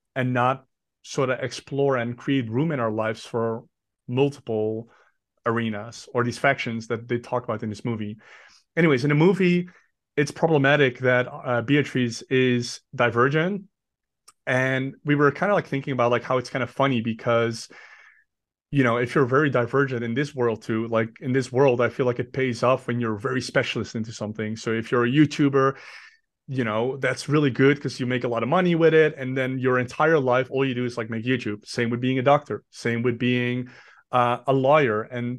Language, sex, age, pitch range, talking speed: English, male, 30-49, 120-135 Hz, 200 wpm